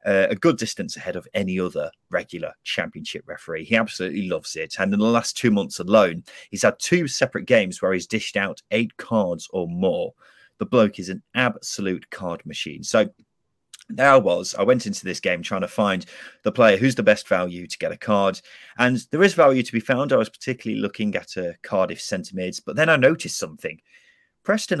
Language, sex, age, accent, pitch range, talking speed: English, male, 30-49, British, 105-140 Hz, 210 wpm